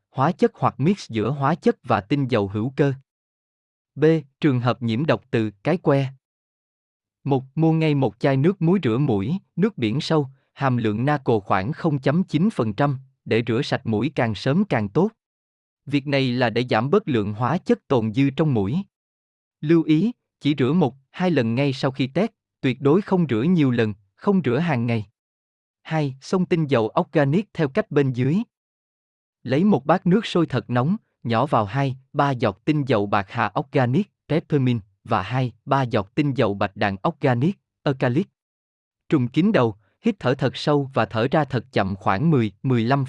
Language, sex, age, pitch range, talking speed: Vietnamese, male, 20-39, 115-160 Hz, 180 wpm